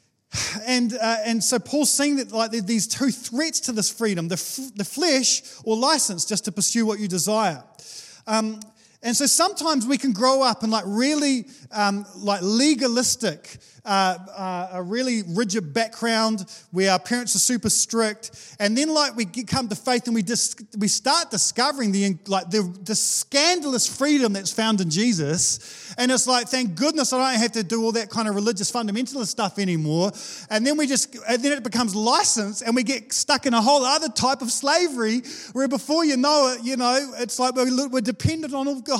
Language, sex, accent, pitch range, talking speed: English, male, Australian, 210-265 Hz, 200 wpm